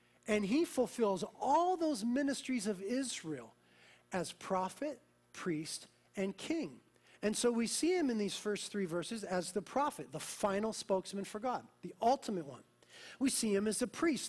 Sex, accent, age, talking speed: male, American, 40-59, 170 wpm